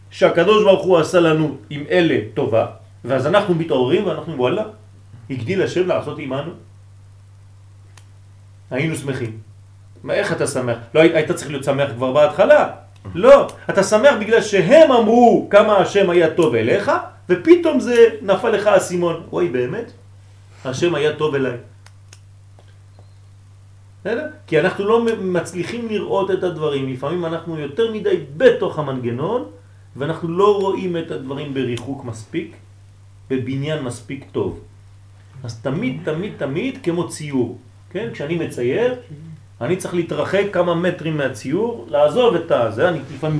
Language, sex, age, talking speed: French, male, 40-59, 130 wpm